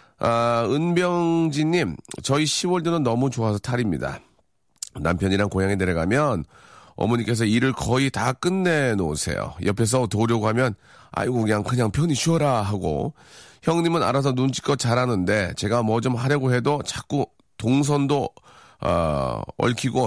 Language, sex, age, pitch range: Korean, male, 40-59, 105-145 Hz